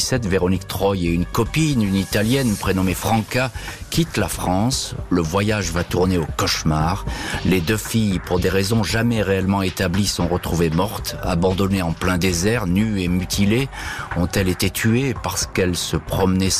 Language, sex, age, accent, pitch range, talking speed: French, male, 40-59, French, 90-110 Hz, 160 wpm